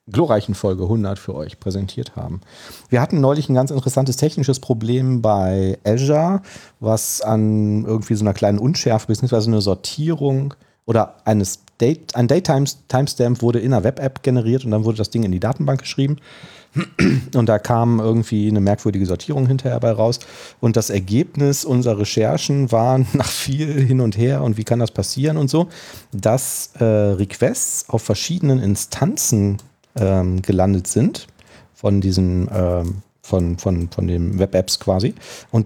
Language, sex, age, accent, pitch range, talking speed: German, male, 40-59, German, 100-130 Hz, 150 wpm